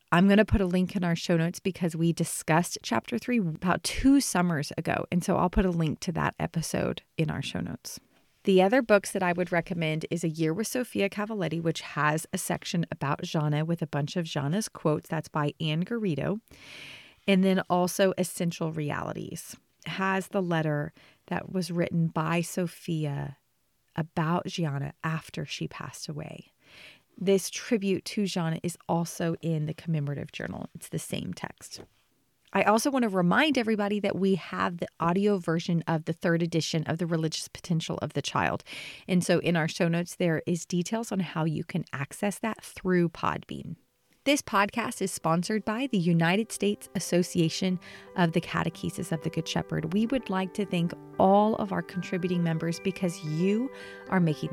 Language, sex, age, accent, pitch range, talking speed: English, female, 30-49, American, 160-195 Hz, 180 wpm